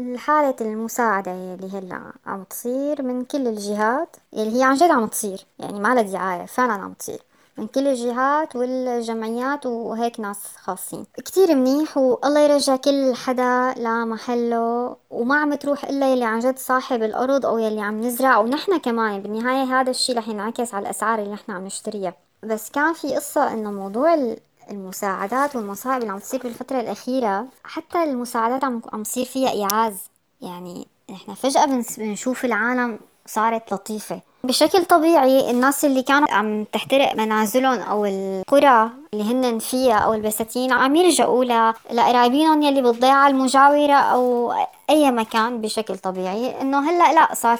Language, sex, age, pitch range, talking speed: Arabic, male, 20-39, 220-270 Hz, 145 wpm